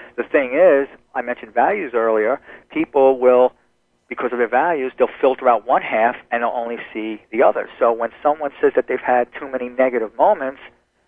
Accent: American